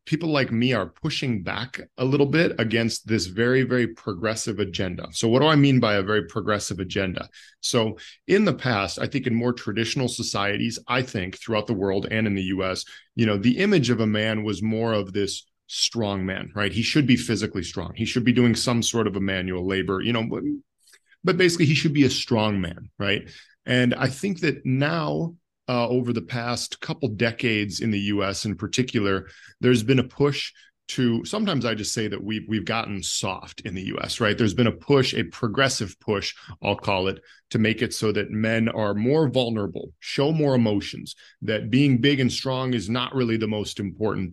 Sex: male